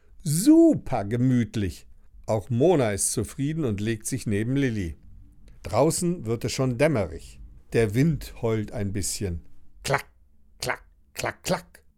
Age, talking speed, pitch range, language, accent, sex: 60-79, 125 wpm, 95-150 Hz, German, German, male